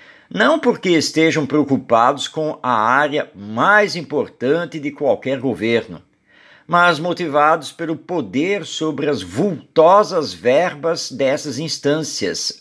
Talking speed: 105 wpm